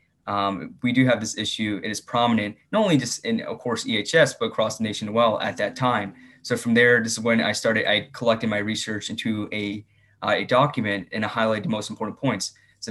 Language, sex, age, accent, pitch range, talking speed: English, male, 20-39, American, 105-115 Hz, 235 wpm